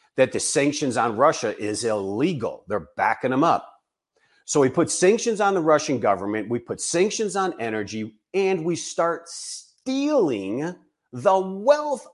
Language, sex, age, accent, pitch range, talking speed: English, male, 40-59, American, 135-210 Hz, 150 wpm